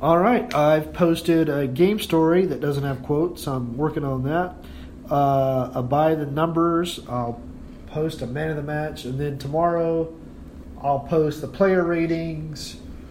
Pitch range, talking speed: 125-155 Hz, 155 wpm